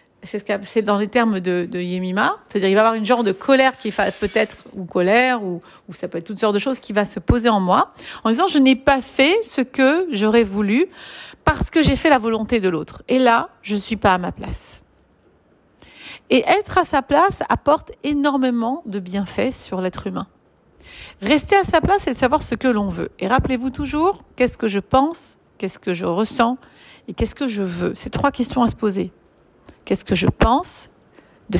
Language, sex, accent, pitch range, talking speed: French, female, French, 200-260 Hz, 210 wpm